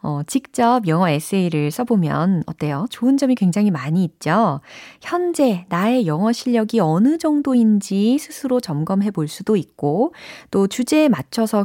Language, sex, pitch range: Korean, female, 170-250 Hz